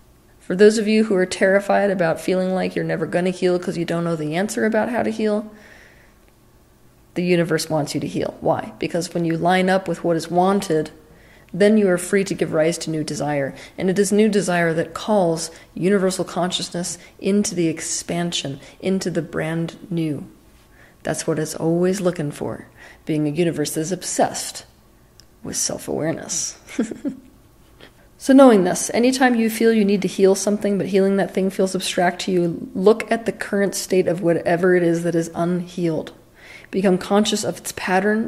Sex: female